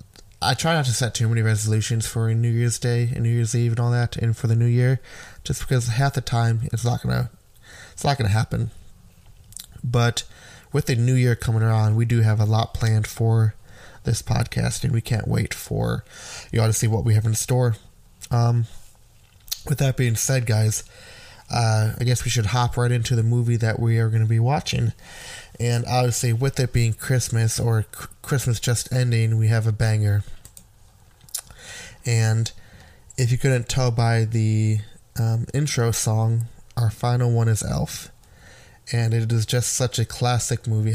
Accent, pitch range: American, 110-120 Hz